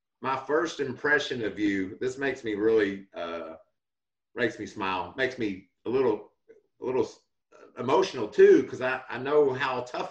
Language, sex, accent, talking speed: English, male, American, 160 wpm